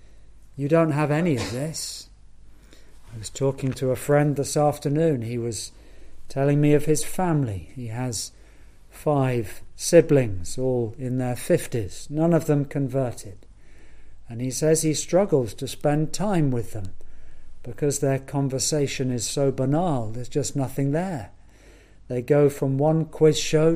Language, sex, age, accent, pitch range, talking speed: English, male, 50-69, British, 120-155 Hz, 150 wpm